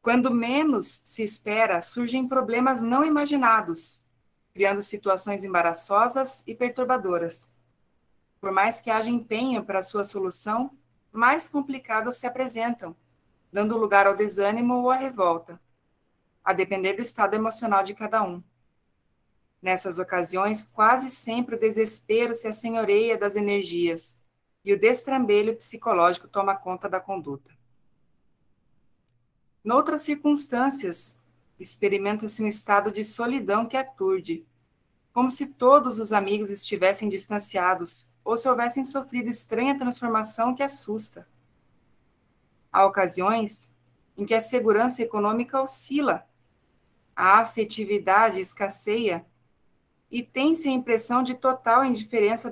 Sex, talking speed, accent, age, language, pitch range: female, 115 wpm, Brazilian, 40-59, Portuguese, 195-245 Hz